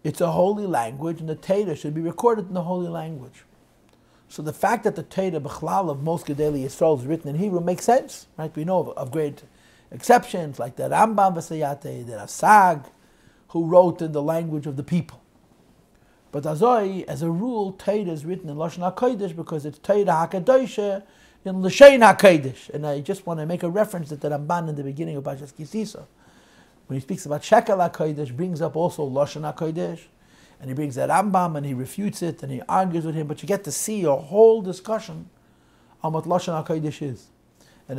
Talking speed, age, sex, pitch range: 195 wpm, 60-79, male, 145-185 Hz